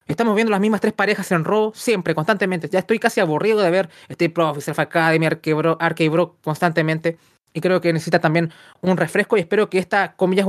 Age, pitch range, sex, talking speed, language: 20-39, 165-200 Hz, male, 200 wpm, Spanish